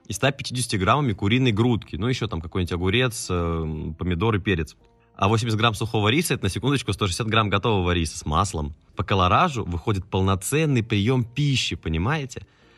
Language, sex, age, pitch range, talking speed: Russian, male, 20-39, 95-120 Hz, 160 wpm